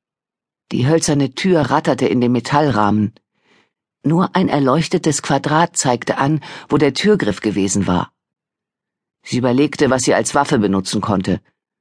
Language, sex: German, female